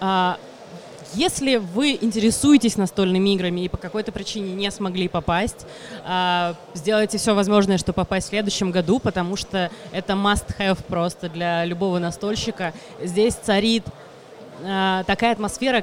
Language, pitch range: Russian, 185-225 Hz